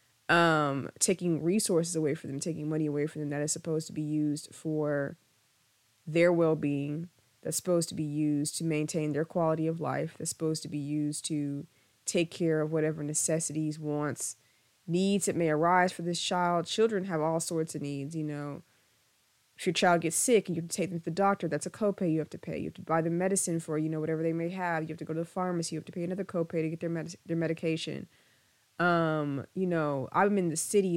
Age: 20-39